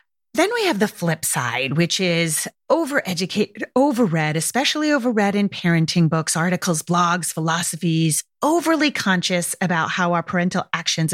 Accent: American